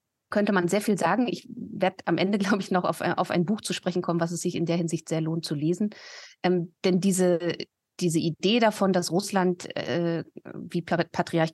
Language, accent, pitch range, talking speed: German, German, 170-205 Hz, 210 wpm